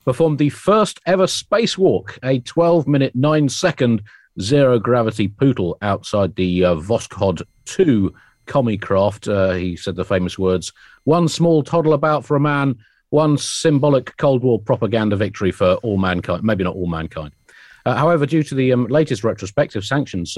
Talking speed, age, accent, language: 160 wpm, 40-59, British, English